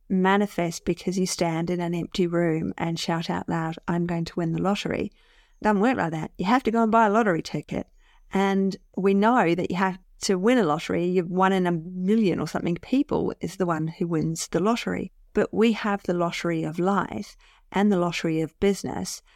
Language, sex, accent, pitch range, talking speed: English, female, Australian, 170-205 Hz, 210 wpm